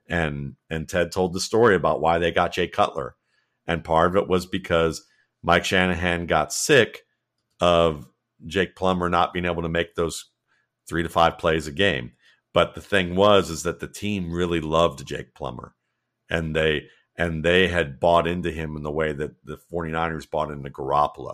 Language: English